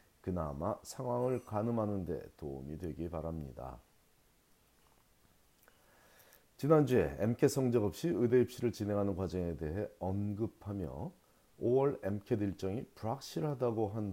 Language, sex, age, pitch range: Korean, male, 40-59, 85-115 Hz